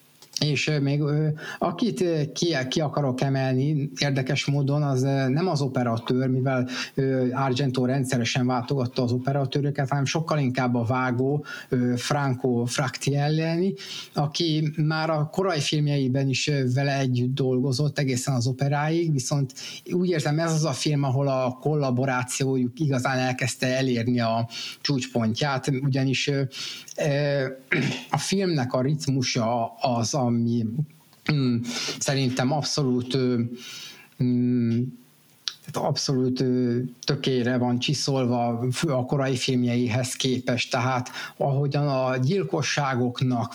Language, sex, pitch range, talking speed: Hungarian, male, 125-145 Hz, 105 wpm